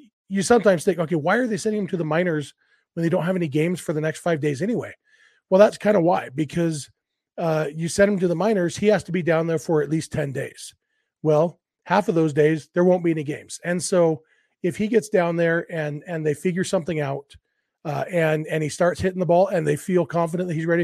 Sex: male